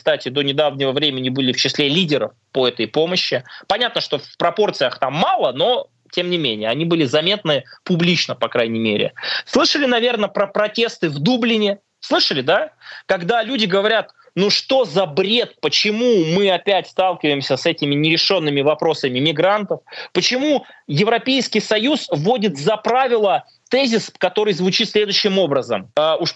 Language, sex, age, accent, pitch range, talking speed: Russian, male, 20-39, native, 150-225 Hz, 145 wpm